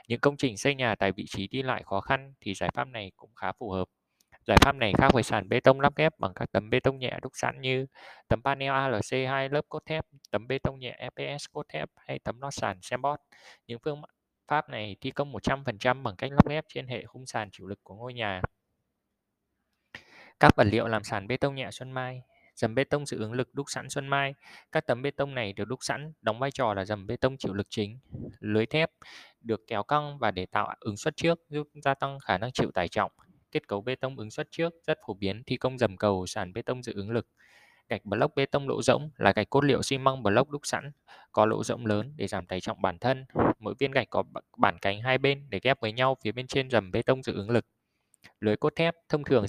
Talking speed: 250 wpm